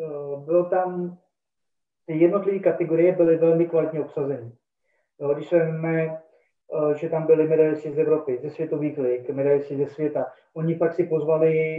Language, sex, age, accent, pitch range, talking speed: Czech, male, 20-39, native, 150-170 Hz, 135 wpm